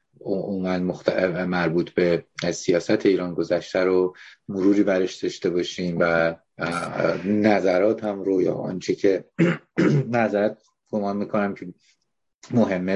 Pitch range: 90-100 Hz